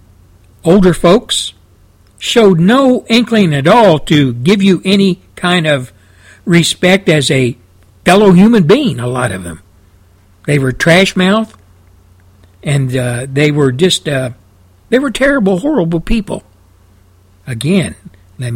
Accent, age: American, 60-79